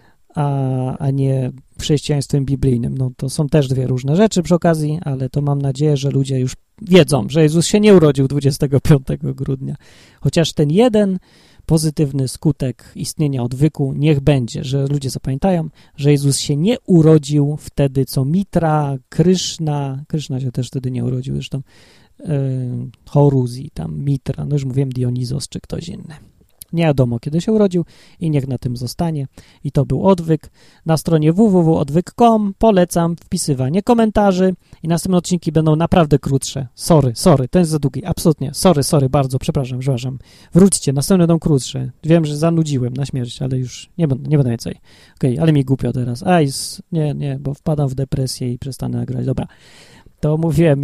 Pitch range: 130-165 Hz